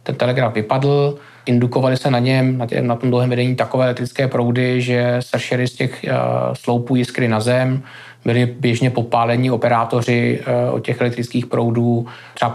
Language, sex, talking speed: Czech, male, 165 wpm